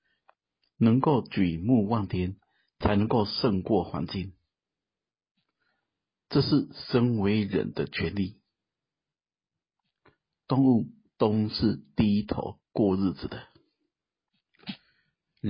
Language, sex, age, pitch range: Chinese, male, 50-69, 95-125 Hz